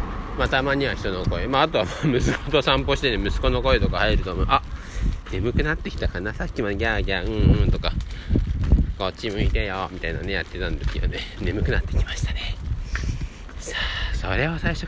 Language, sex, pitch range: Japanese, male, 80-110 Hz